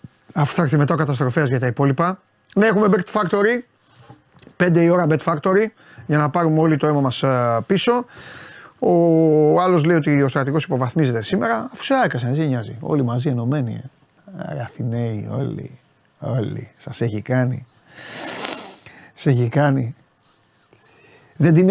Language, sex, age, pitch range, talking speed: Greek, male, 30-49, 130-170 Hz, 140 wpm